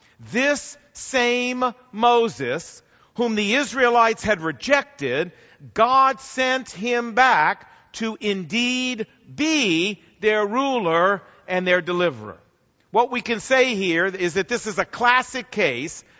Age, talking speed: 50-69, 120 wpm